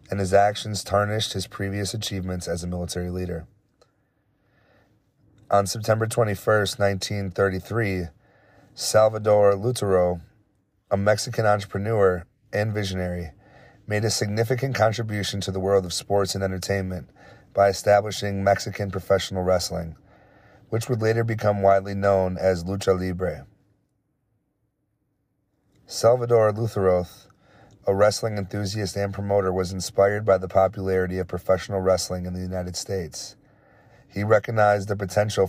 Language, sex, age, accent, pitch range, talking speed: English, male, 30-49, American, 95-105 Hz, 120 wpm